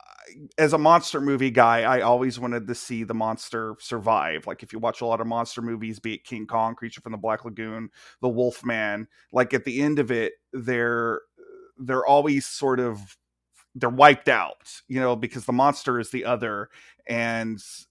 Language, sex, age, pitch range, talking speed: English, male, 30-49, 115-140 Hz, 190 wpm